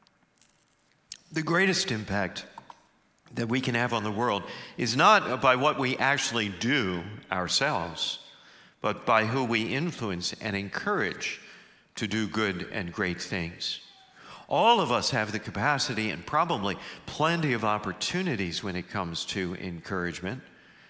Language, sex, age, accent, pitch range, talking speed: English, male, 50-69, American, 95-130 Hz, 135 wpm